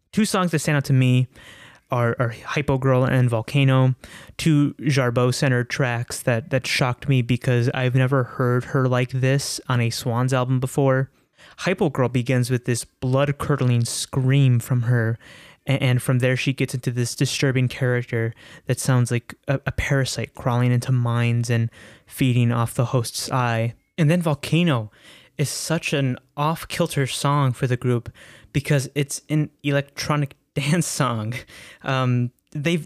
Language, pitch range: English, 120-145 Hz